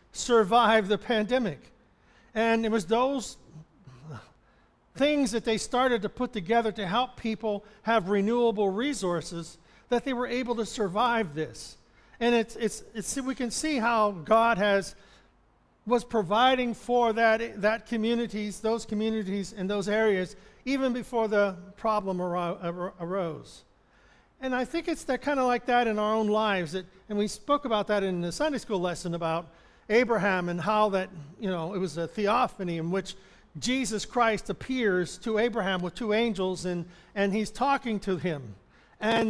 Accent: American